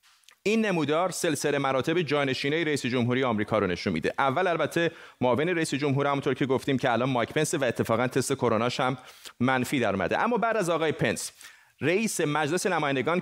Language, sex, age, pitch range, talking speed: Persian, male, 30-49, 125-170 Hz, 175 wpm